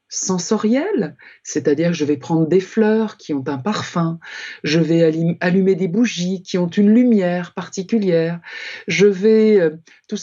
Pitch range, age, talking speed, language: 155-215 Hz, 50-69, 160 wpm, French